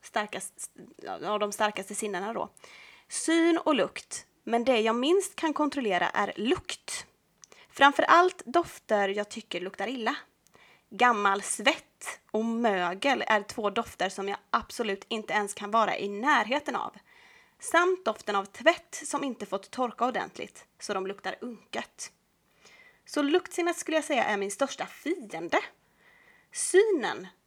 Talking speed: 140 wpm